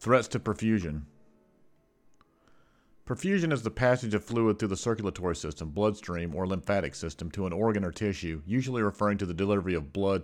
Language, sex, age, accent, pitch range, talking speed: English, male, 50-69, American, 90-110 Hz, 170 wpm